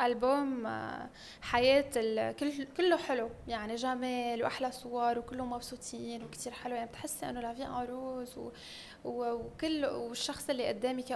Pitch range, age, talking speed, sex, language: 235-265 Hz, 10-29, 120 wpm, female, English